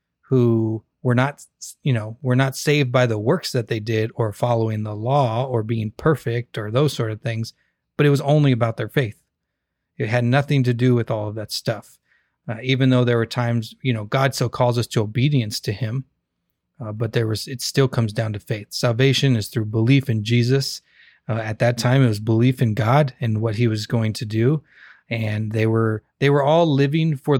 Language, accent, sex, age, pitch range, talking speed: English, American, male, 30-49, 115-135 Hz, 215 wpm